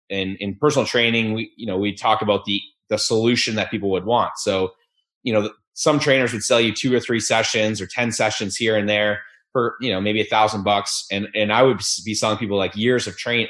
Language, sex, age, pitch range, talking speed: English, male, 20-39, 100-115 Hz, 235 wpm